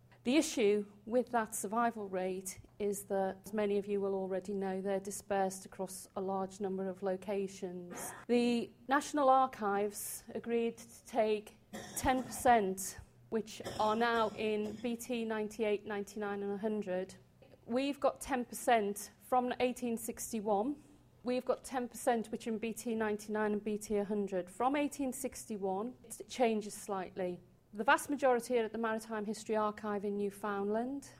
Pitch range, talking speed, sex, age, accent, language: 200-235 Hz, 135 wpm, female, 40-59, British, English